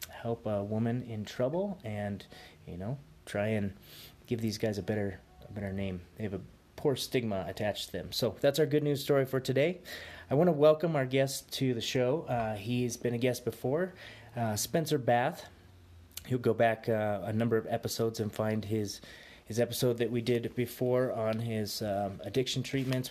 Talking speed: 190 wpm